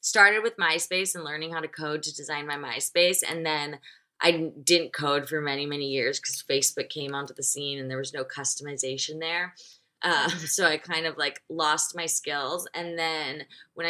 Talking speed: 195 wpm